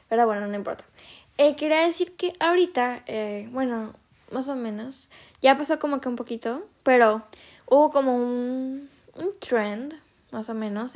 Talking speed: 160 wpm